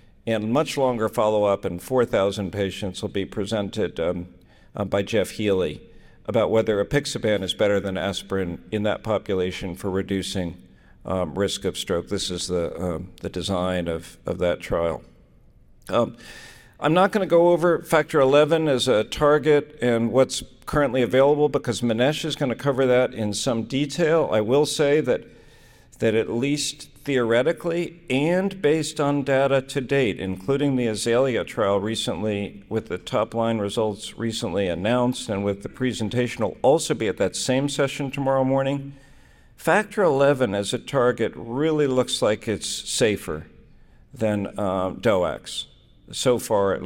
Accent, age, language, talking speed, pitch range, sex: American, 50-69, English, 155 wpm, 100-140 Hz, male